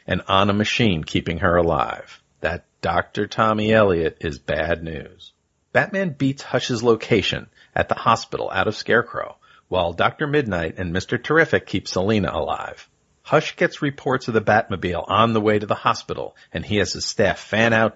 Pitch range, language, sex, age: 95-125 Hz, English, male, 40-59